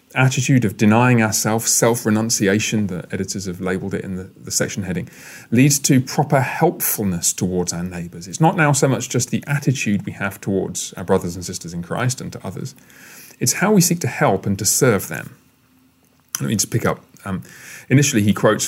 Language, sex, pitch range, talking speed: English, male, 95-130 Hz, 200 wpm